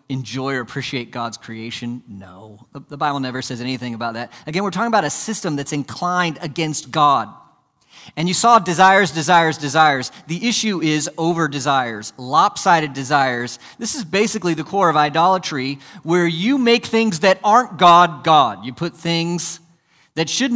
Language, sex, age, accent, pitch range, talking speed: English, male, 40-59, American, 140-195 Hz, 165 wpm